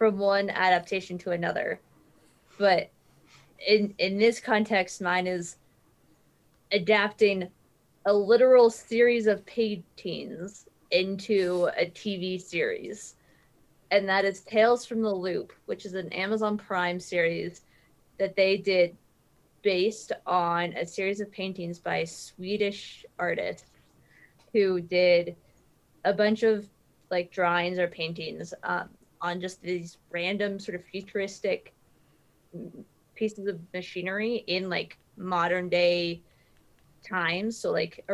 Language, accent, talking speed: English, American, 120 wpm